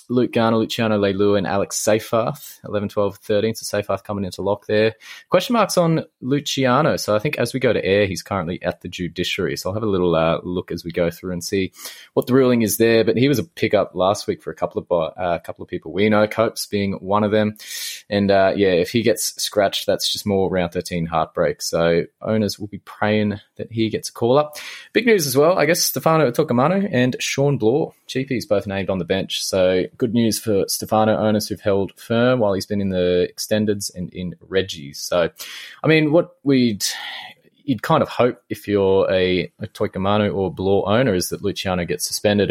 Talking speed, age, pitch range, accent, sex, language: 220 wpm, 20-39, 95-125 Hz, Australian, male, English